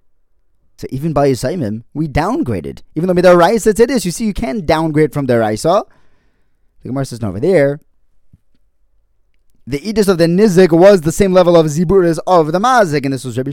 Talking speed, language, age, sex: 195 wpm, English, 20-39, male